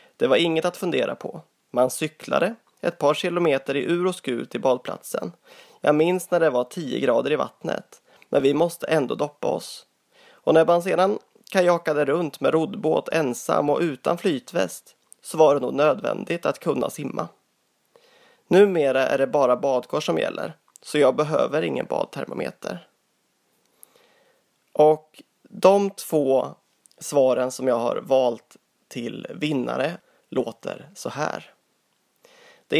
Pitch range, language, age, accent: 140-185 Hz, Swedish, 20-39, native